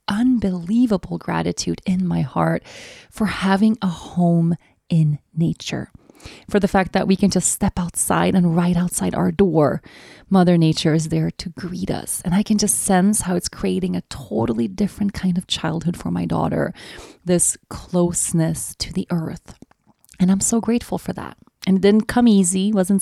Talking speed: 170 wpm